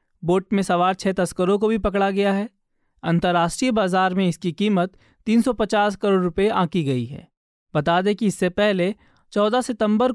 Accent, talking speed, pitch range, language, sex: native, 165 wpm, 175-215 Hz, Hindi, male